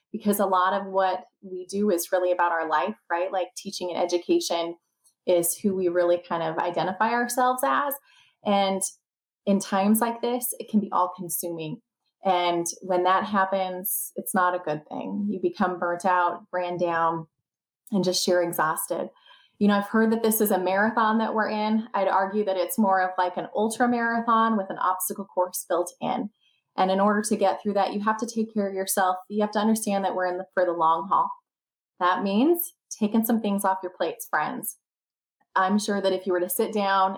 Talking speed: 205 wpm